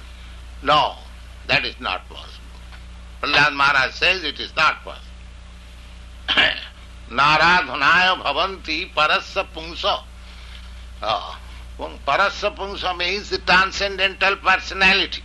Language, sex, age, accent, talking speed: English, male, 60-79, Indian, 85 wpm